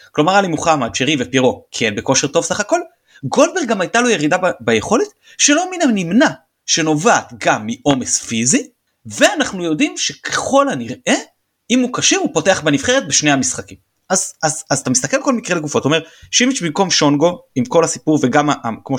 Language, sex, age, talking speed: Hebrew, male, 30-49, 175 wpm